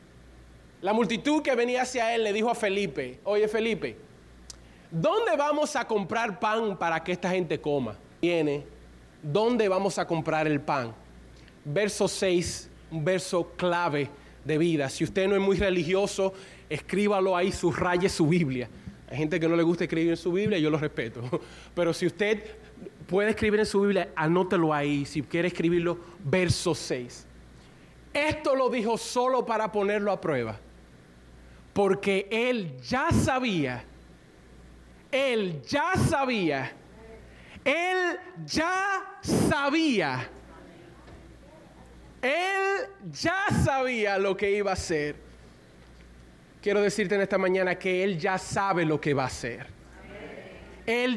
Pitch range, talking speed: 155-220 Hz, 135 wpm